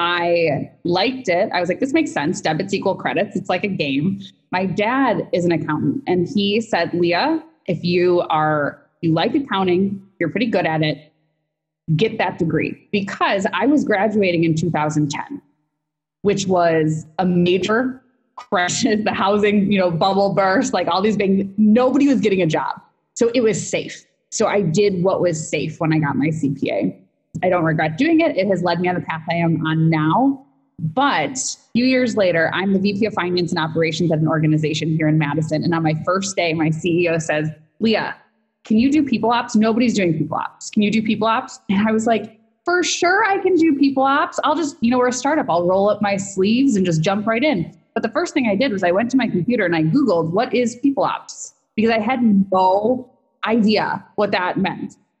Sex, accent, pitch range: female, American, 165-235 Hz